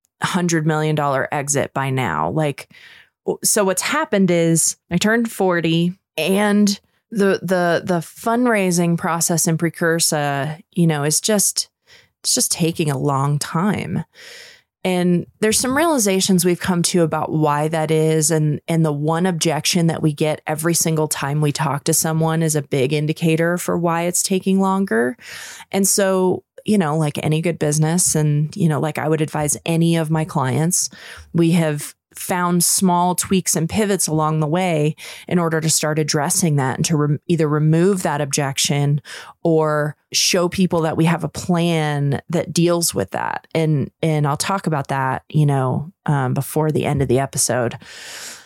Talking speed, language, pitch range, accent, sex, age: 170 wpm, English, 155-185 Hz, American, female, 20-39